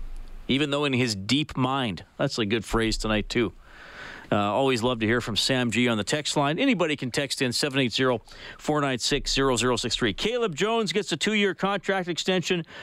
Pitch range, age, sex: 145-185 Hz, 40-59, male